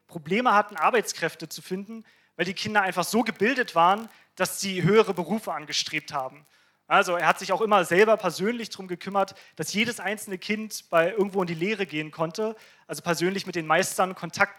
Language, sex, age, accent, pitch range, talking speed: German, male, 30-49, German, 165-195 Hz, 185 wpm